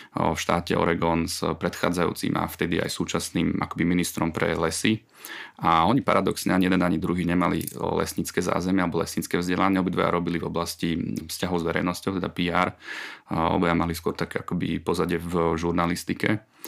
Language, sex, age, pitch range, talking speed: Slovak, male, 30-49, 80-90 Hz, 150 wpm